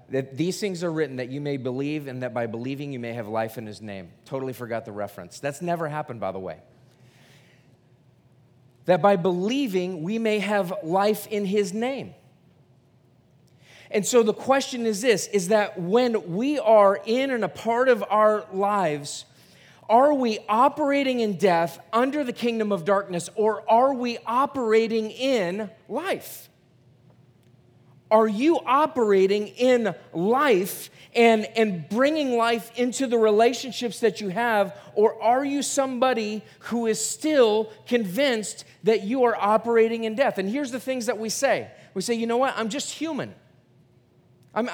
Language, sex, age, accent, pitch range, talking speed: English, male, 30-49, American, 145-235 Hz, 160 wpm